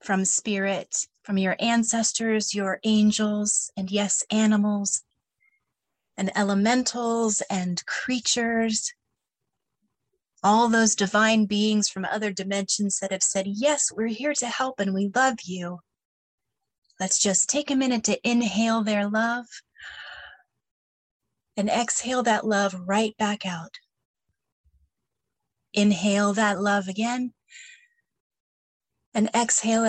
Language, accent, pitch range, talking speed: English, American, 195-235 Hz, 110 wpm